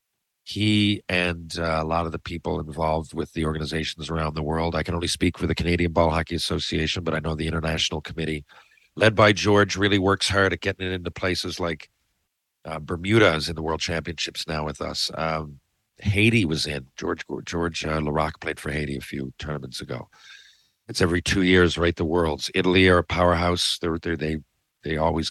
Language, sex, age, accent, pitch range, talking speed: English, male, 50-69, American, 80-100 Hz, 200 wpm